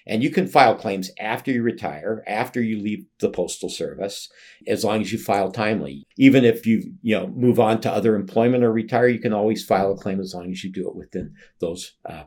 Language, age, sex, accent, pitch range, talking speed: English, 50-69, male, American, 100-125 Hz, 225 wpm